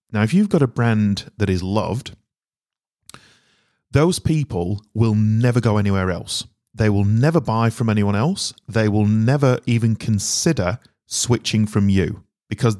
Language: English